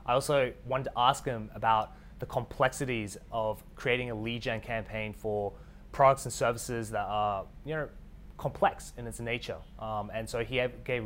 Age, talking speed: 20-39, 175 wpm